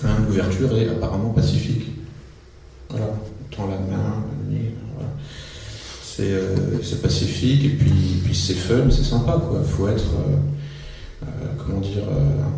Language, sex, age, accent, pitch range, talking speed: French, male, 40-59, French, 105-135 Hz, 155 wpm